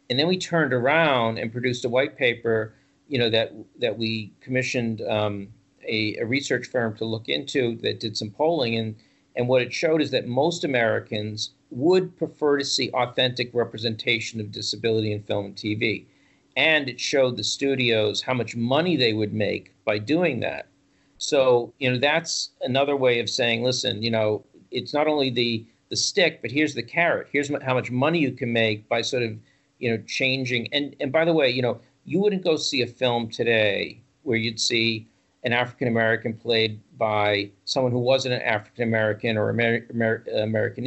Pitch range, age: 110-140 Hz, 50-69